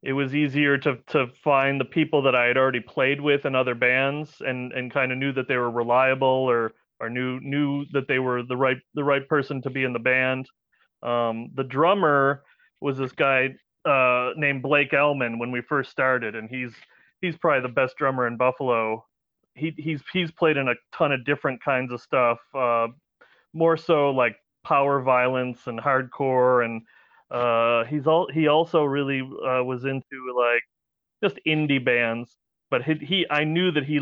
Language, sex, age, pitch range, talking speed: English, male, 30-49, 125-145 Hz, 190 wpm